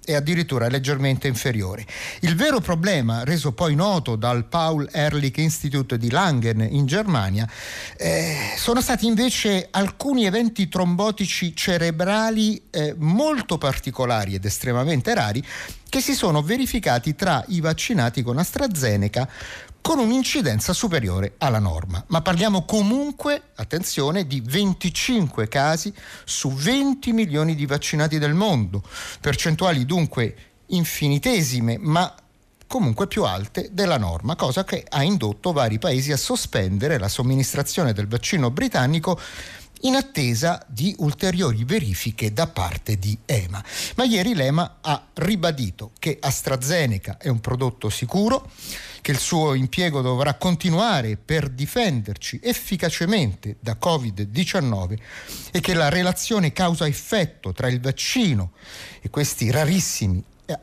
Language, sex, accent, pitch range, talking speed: Italian, male, native, 120-185 Hz, 120 wpm